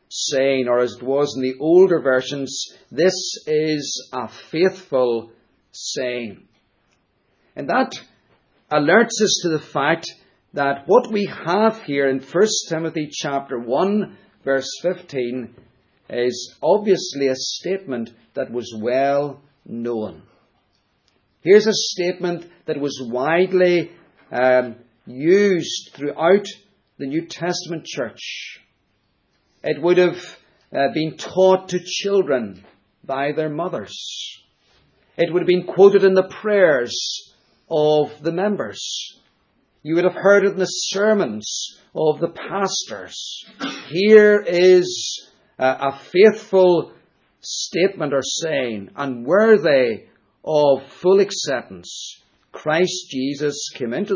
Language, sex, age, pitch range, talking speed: English, male, 50-69, 135-185 Hz, 110 wpm